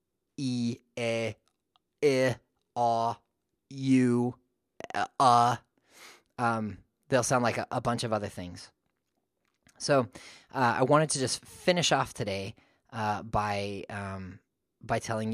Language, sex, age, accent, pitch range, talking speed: English, male, 20-39, American, 105-125 Hz, 135 wpm